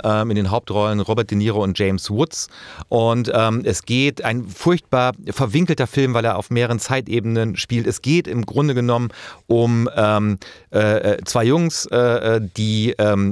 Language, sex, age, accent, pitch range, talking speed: German, male, 40-59, German, 100-125 Hz, 160 wpm